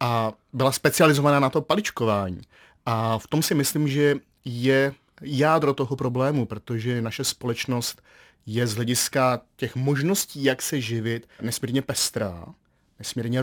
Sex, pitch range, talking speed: male, 120-140 Hz, 135 wpm